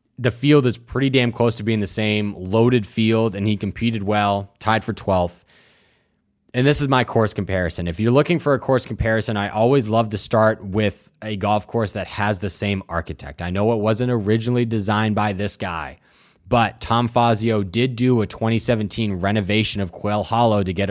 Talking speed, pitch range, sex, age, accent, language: 195 wpm, 100-115 Hz, male, 20-39, American, English